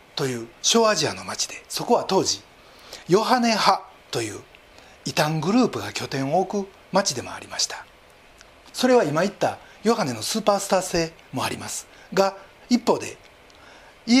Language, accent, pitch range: Japanese, native, 165-250 Hz